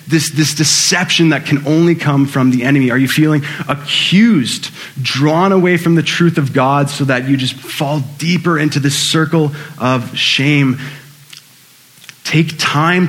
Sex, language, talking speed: male, English, 155 wpm